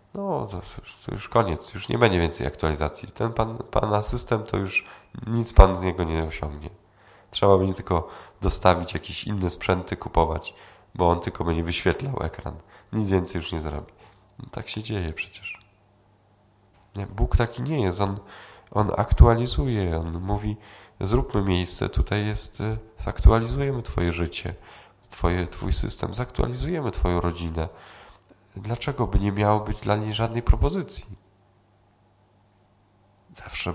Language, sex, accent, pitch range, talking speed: Polish, male, native, 90-110 Hz, 140 wpm